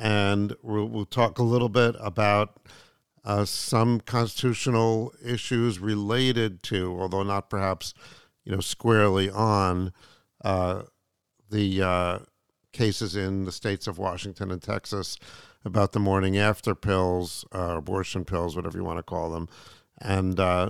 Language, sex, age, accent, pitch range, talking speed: English, male, 50-69, American, 95-110 Hz, 135 wpm